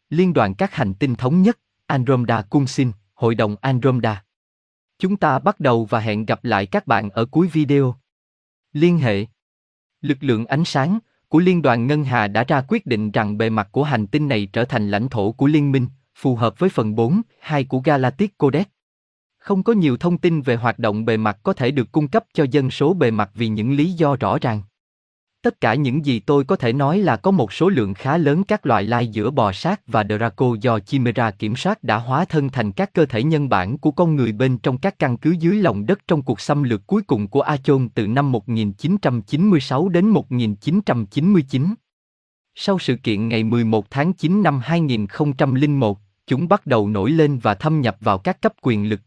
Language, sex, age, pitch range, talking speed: Vietnamese, male, 20-39, 110-155 Hz, 210 wpm